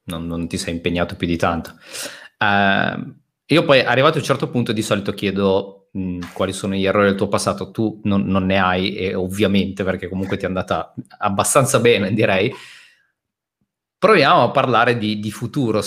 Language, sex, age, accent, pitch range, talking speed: Italian, male, 30-49, native, 95-105 Hz, 180 wpm